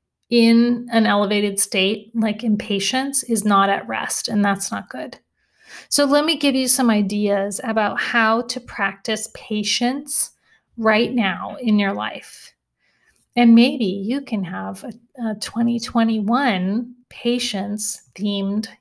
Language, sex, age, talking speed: English, female, 30-49, 125 wpm